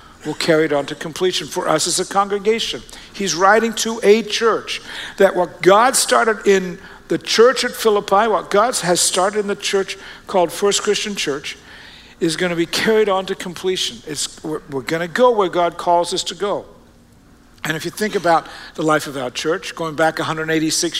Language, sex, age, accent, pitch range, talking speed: English, male, 60-79, American, 170-210 Hz, 195 wpm